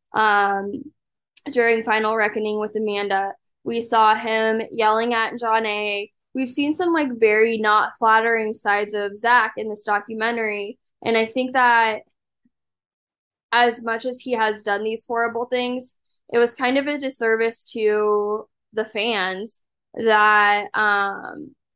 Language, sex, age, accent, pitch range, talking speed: English, female, 10-29, American, 210-235 Hz, 140 wpm